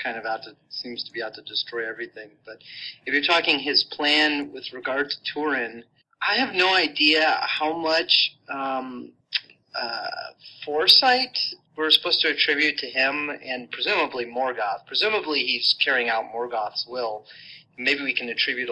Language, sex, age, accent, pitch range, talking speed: English, male, 30-49, American, 125-150 Hz, 155 wpm